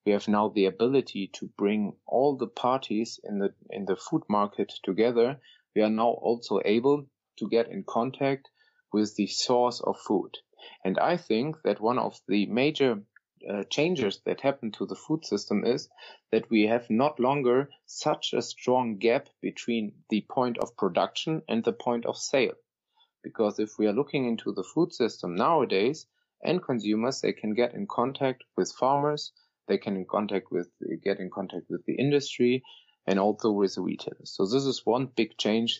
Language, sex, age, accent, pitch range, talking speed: English, male, 30-49, German, 105-135 Hz, 180 wpm